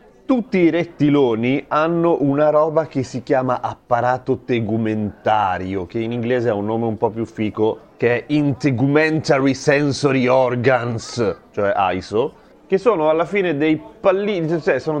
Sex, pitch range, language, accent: male, 110-155 Hz, Italian, native